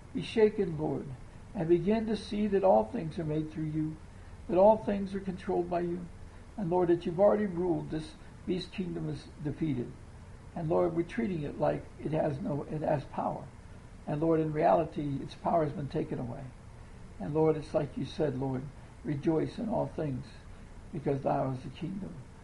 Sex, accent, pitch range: male, American, 145-195 Hz